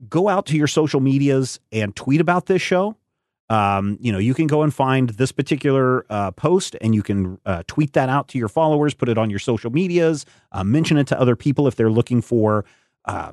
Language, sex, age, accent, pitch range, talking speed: English, male, 30-49, American, 110-140 Hz, 225 wpm